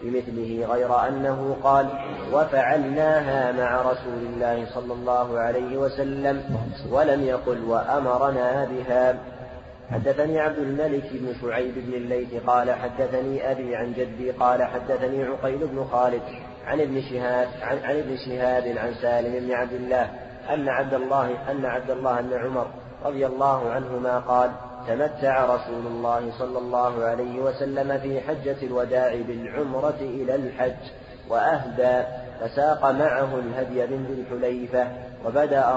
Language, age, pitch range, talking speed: Arabic, 30-49, 125-135 Hz, 125 wpm